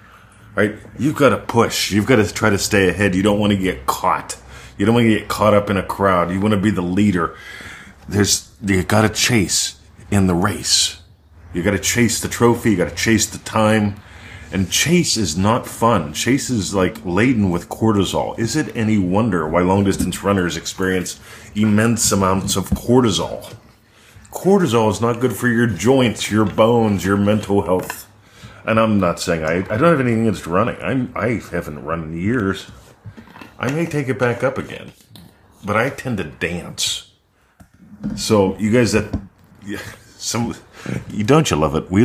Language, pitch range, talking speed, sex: English, 90-110 Hz, 180 wpm, male